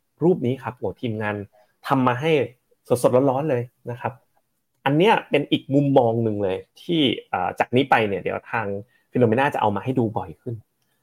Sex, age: male, 30-49